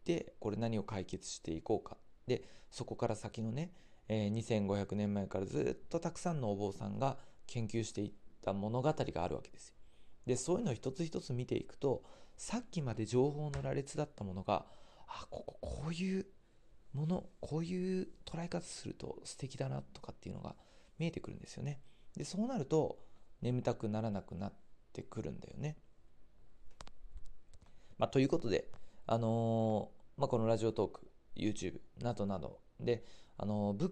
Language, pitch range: Japanese, 105-150 Hz